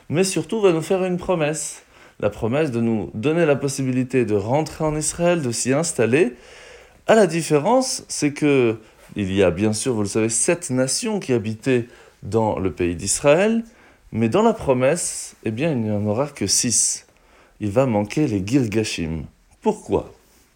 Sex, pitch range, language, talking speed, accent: male, 105-155 Hz, French, 170 wpm, French